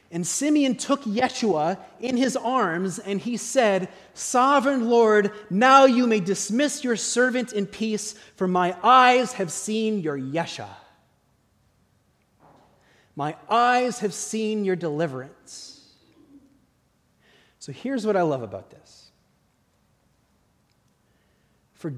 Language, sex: English, male